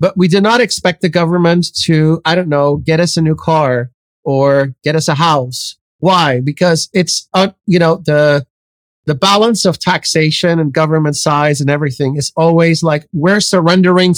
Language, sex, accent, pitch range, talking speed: English, male, American, 150-180 Hz, 180 wpm